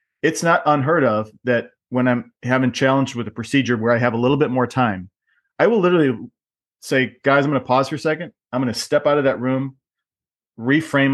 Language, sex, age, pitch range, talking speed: English, male, 30-49, 115-145 Hz, 220 wpm